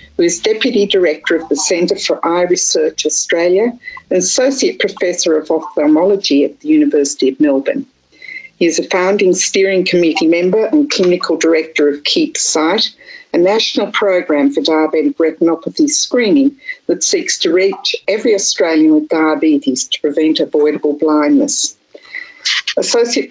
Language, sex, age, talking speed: English, female, 50-69, 135 wpm